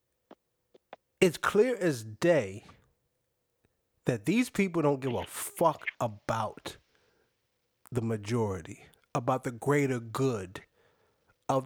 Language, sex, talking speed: English, male, 100 wpm